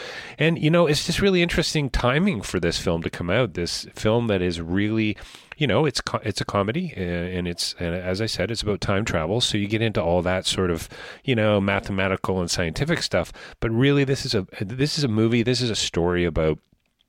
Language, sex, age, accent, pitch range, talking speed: English, male, 40-59, American, 85-115 Hz, 225 wpm